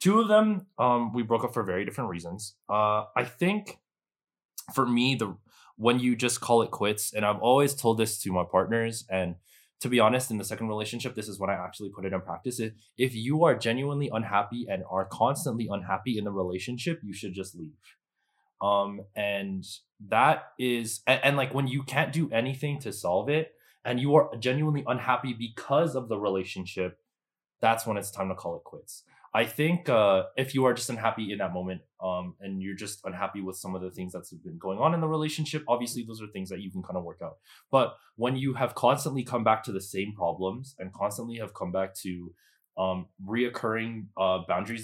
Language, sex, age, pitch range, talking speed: English, male, 20-39, 95-125 Hz, 210 wpm